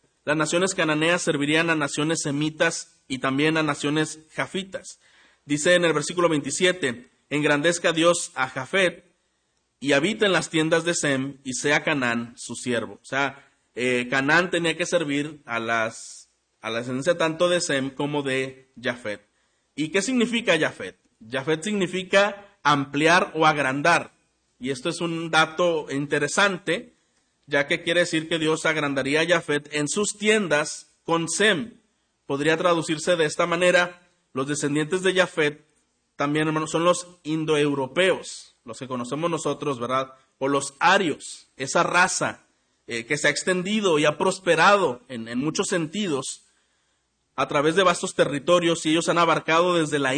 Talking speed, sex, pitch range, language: 155 wpm, male, 140-175 Hz, Spanish